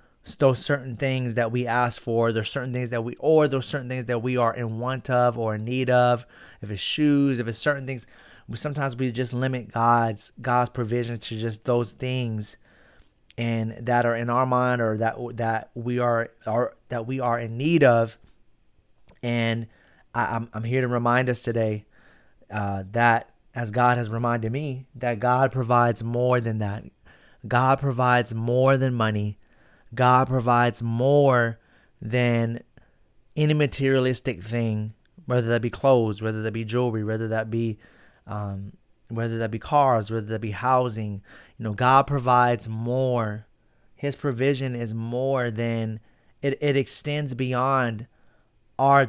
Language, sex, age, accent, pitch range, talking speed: English, male, 30-49, American, 115-130 Hz, 160 wpm